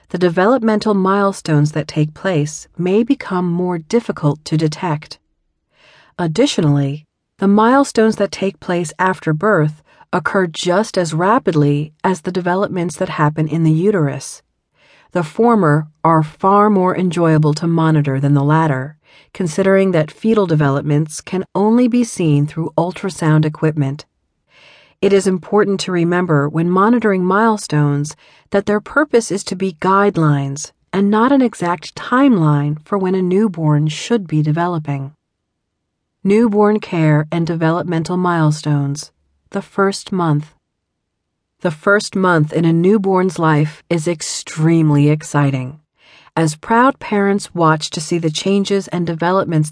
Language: English